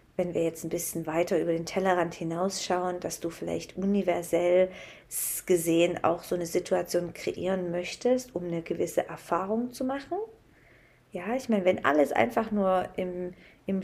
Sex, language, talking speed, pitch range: female, German, 155 wpm, 180-220 Hz